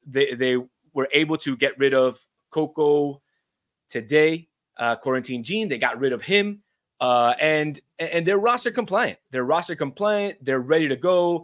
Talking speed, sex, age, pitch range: 165 wpm, male, 20-39, 130-160 Hz